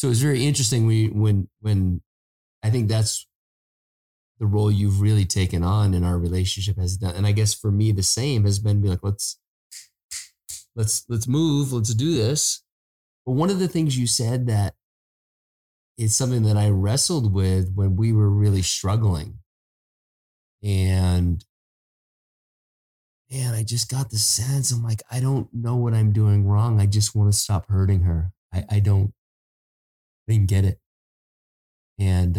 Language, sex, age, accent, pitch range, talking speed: English, male, 30-49, American, 90-110 Hz, 165 wpm